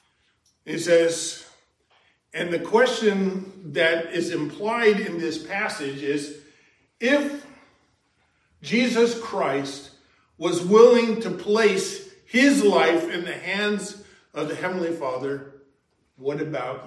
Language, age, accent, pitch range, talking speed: English, 50-69, American, 145-205 Hz, 105 wpm